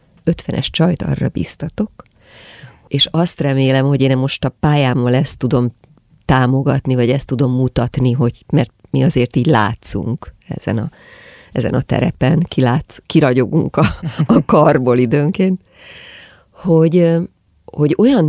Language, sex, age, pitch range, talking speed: Hungarian, female, 30-49, 130-160 Hz, 130 wpm